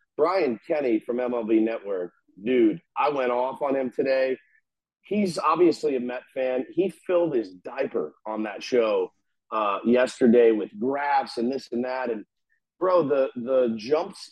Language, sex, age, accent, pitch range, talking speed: English, male, 40-59, American, 120-160 Hz, 155 wpm